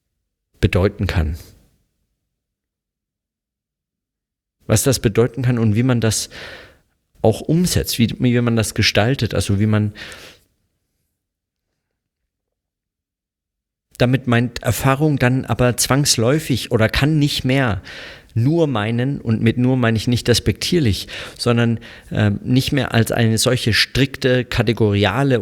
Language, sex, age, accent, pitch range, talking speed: German, male, 50-69, German, 105-125 Hz, 115 wpm